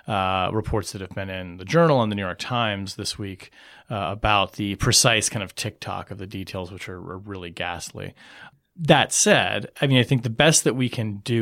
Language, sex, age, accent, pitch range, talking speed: English, male, 30-49, American, 105-135 Hz, 220 wpm